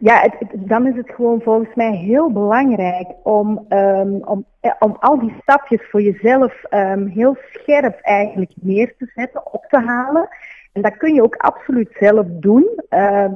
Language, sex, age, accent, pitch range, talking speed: Dutch, female, 30-49, Dutch, 195-245 Hz, 155 wpm